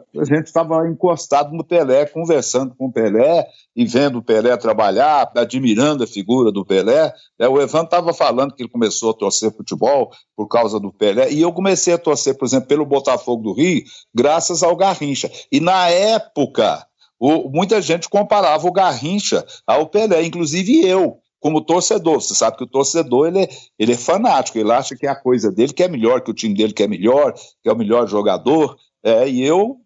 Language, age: Portuguese, 60-79